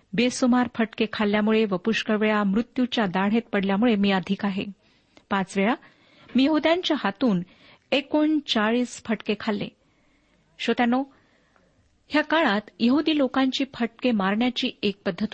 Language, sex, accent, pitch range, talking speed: Marathi, female, native, 205-265 Hz, 110 wpm